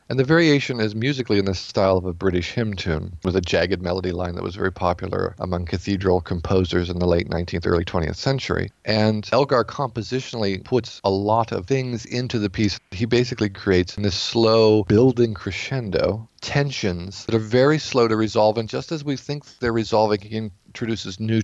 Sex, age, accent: male, 40-59, American